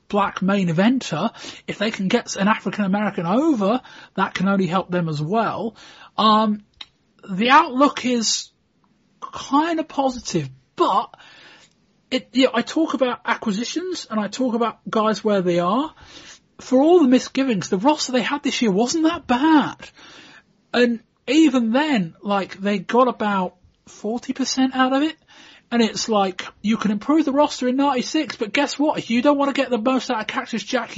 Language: English